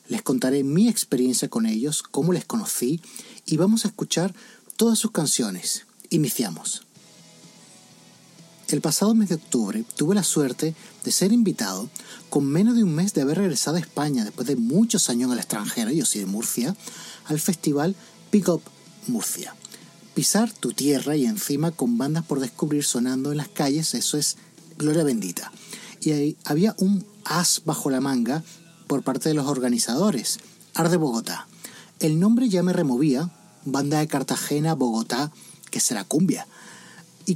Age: 30-49